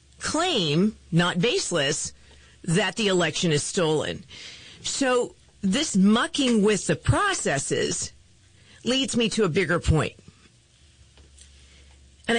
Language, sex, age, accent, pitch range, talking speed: English, female, 50-69, American, 160-230 Hz, 100 wpm